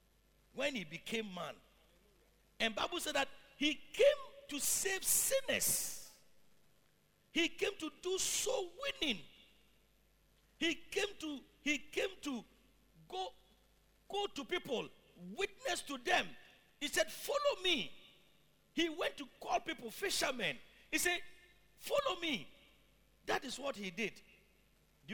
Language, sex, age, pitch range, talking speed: English, male, 50-69, 220-345 Hz, 125 wpm